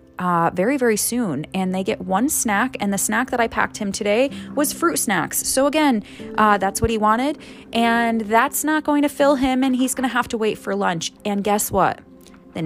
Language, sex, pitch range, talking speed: English, female, 185-240 Hz, 225 wpm